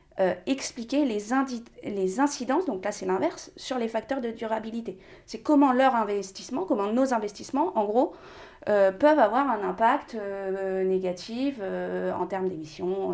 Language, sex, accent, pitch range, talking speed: French, female, French, 180-225 Hz, 155 wpm